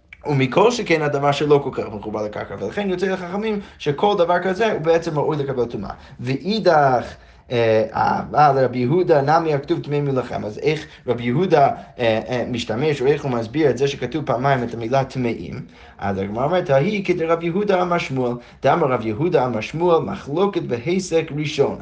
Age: 20-39